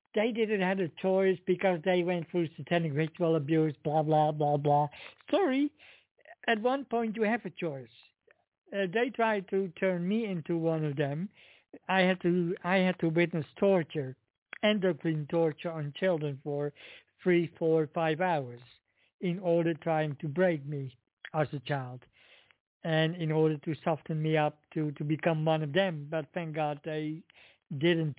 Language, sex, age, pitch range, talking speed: English, male, 60-79, 155-185 Hz, 165 wpm